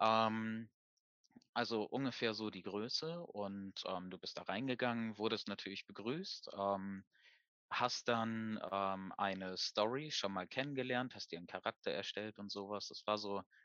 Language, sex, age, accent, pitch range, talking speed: German, male, 20-39, German, 100-120 Hz, 145 wpm